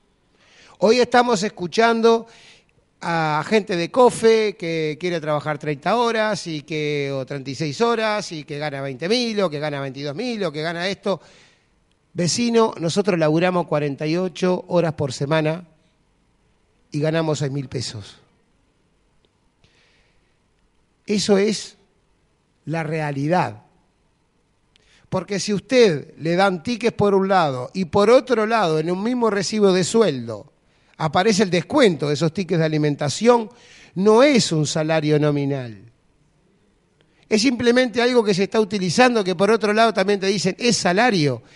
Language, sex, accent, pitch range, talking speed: Spanish, male, Argentinian, 150-215 Hz, 135 wpm